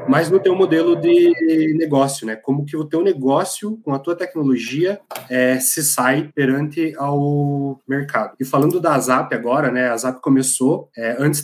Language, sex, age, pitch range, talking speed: Portuguese, male, 20-39, 125-150 Hz, 175 wpm